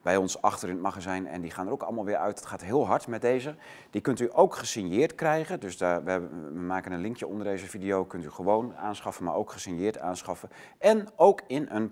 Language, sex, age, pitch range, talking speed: Dutch, male, 30-49, 95-125 Hz, 235 wpm